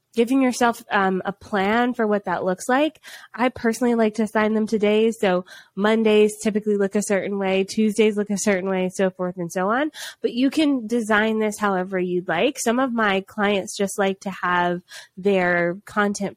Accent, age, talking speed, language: American, 20-39, 190 wpm, English